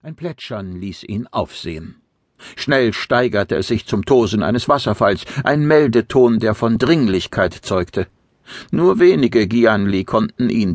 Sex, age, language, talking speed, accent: male, 60-79, German, 135 wpm, German